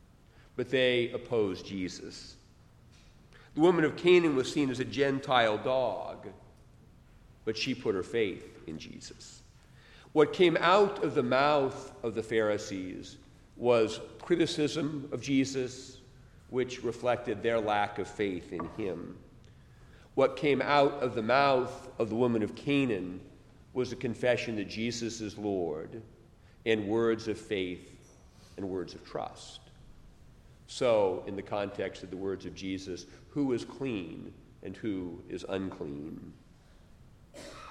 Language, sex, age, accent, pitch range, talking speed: English, male, 40-59, American, 105-135 Hz, 135 wpm